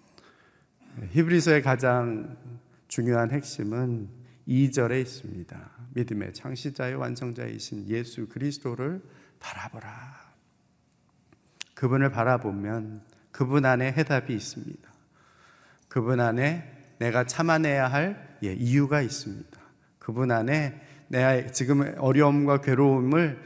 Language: Korean